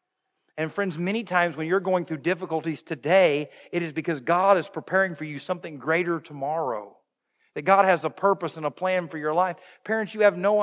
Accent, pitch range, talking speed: American, 170-200 Hz, 205 wpm